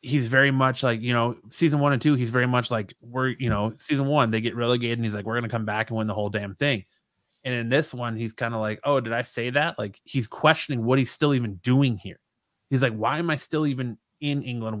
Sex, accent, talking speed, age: male, American, 270 wpm, 20-39